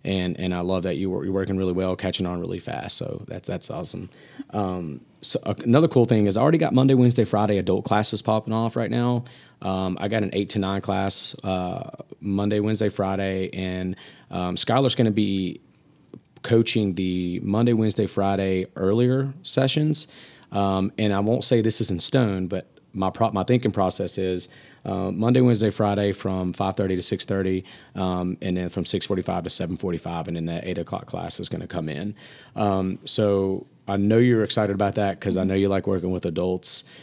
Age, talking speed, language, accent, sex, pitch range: 30-49, 200 wpm, English, American, male, 95-115 Hz